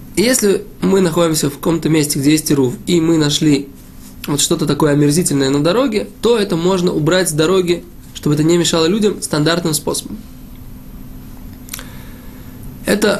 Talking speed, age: 145 wpm, 20-39